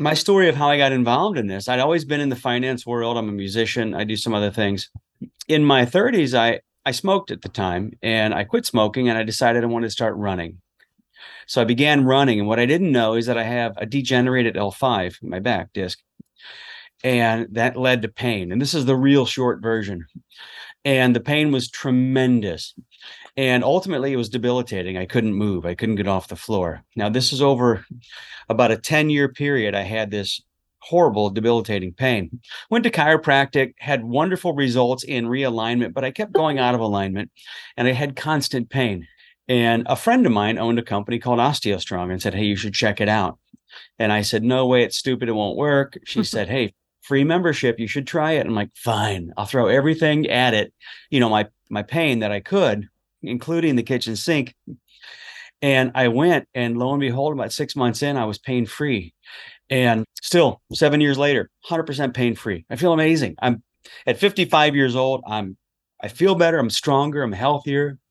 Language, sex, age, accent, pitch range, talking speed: English, male, 30-49, American, 110-140 Hz, 200 wpm